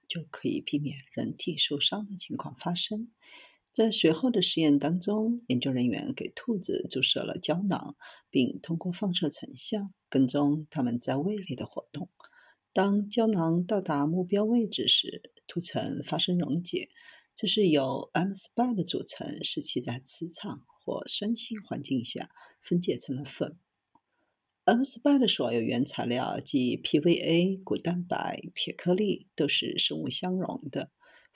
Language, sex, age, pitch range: Chinese, female, 50-69, 150-220 Hz